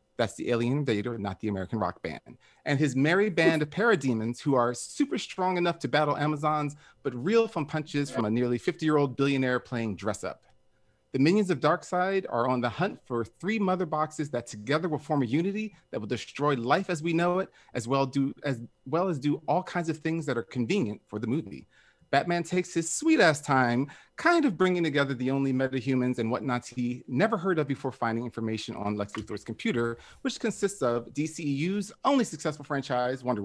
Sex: male